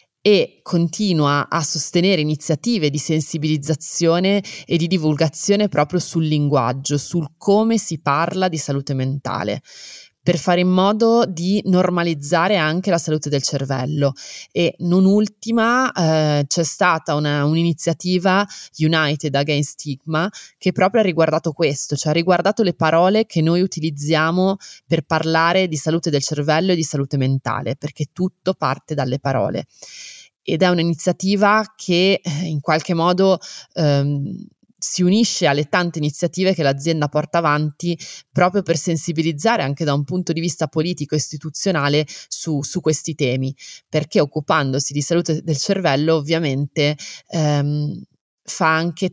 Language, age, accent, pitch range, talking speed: Italian, 20-39, native, 145-180 Hz, 135 wpm